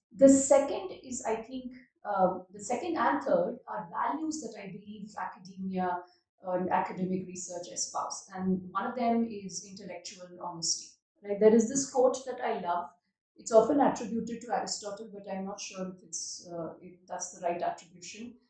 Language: English